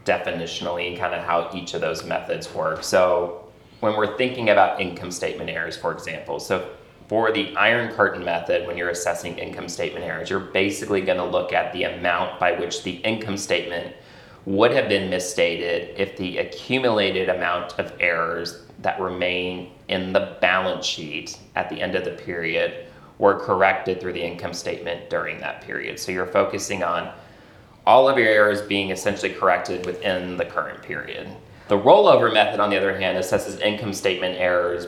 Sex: male